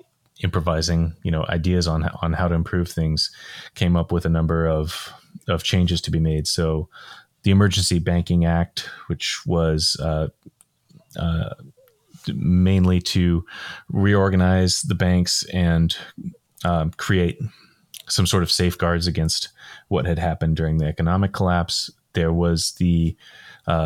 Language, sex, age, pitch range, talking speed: English, male, 30-49, 85-95 Hz, 135 wpm